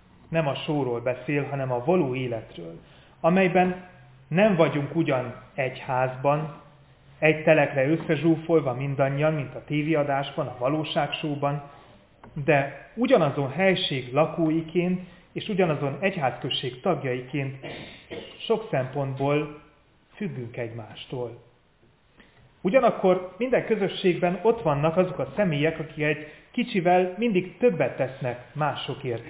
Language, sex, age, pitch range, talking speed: Hungarian, male, 30-49, 130-160 Hz, 100 wpm